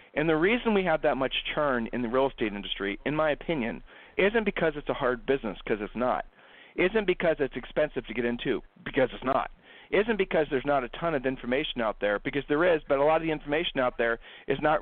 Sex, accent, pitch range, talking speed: male, American, 125-165 Hz, 245 wpm